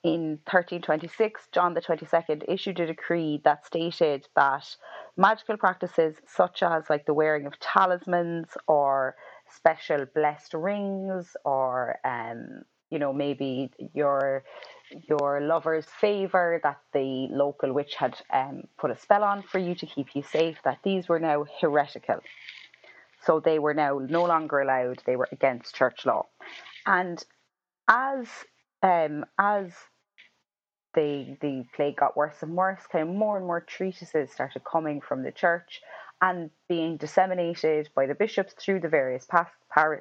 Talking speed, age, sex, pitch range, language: 155 wpm, 30-49, female, 145-180 Hz, English